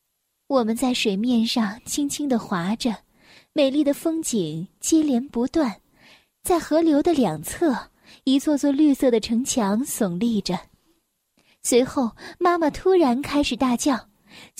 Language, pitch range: Chinese, 235-325 Hz